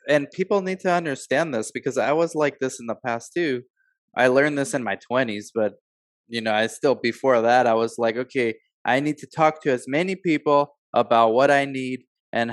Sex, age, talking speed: male, 20-39, 215 wpm